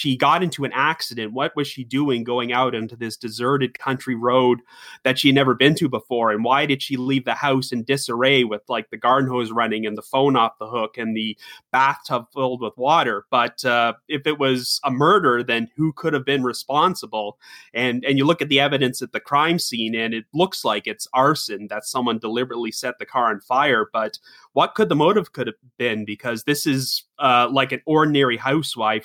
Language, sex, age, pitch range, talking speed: English, male, 30-49, 115-140 Hz, 215 wpm